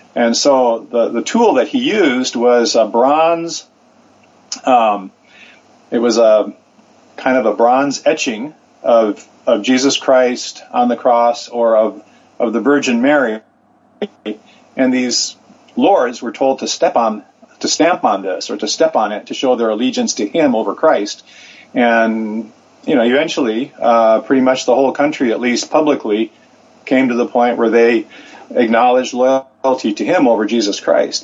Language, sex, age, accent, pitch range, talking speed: English, male, 40-59, American, 115-140 Hz, 160 wpm